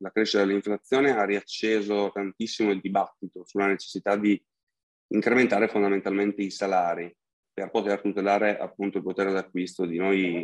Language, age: Italian, 30-49